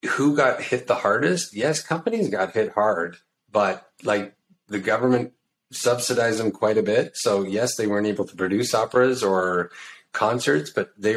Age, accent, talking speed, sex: 30-49, American, 165 wpm, male